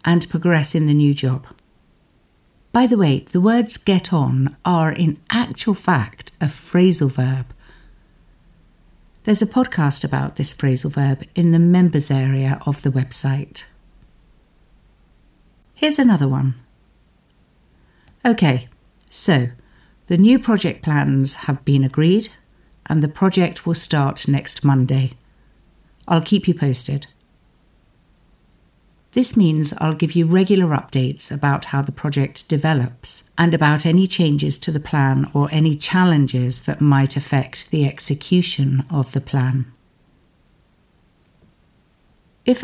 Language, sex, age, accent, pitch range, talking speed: English, female, 60-79, British, 135-170 Hz, 125 wpm